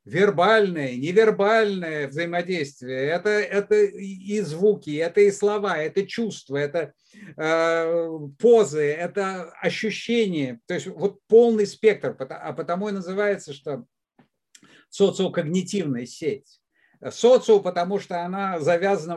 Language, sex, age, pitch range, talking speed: Russian, male, 50-69, 170-210 Hz, 105 wpm